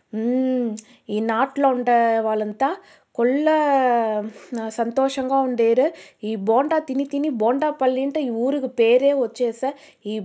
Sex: female